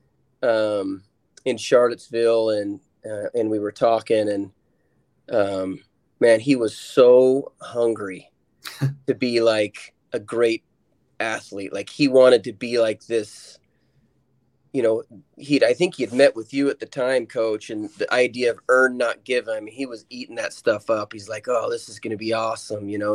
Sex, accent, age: male, American, 30-49